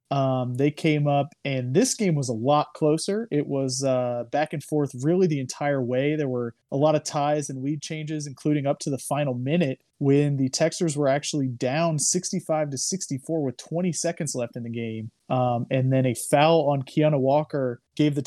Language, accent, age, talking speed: English, American, 20-39, 205 wpm